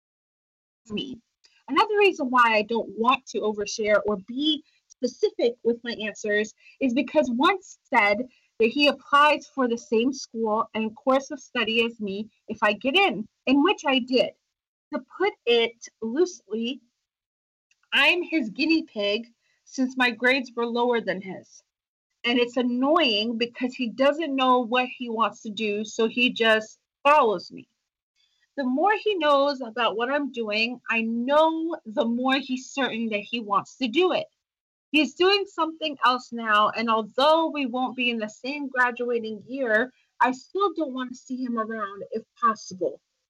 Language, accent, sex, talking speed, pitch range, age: English, American, female, 160 wpm, 225-295 Hz, 30-49